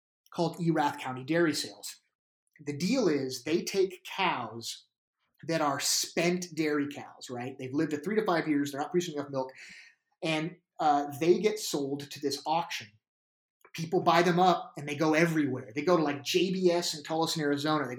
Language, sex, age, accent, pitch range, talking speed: English, male, 30-49, American, 140-170 Hz, 185 wpm